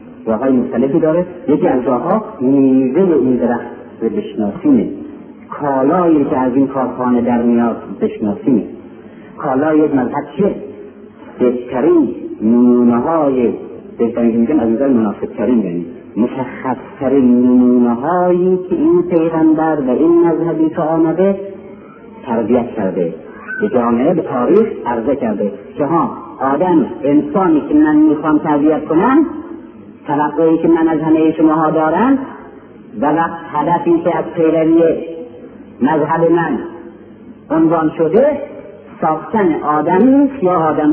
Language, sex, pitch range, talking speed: Persian, male, 155-225 Hz, 120 wpm